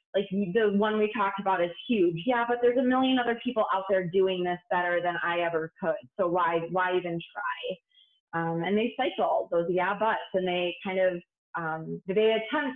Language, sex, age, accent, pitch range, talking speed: English, female, 20-39, American, 185-230 Hz, 200 wpm